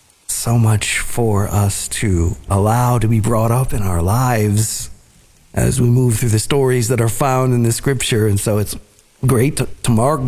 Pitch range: 105-140 Hz